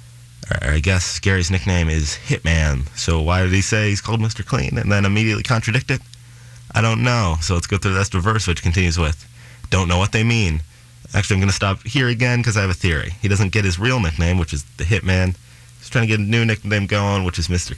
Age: 30-49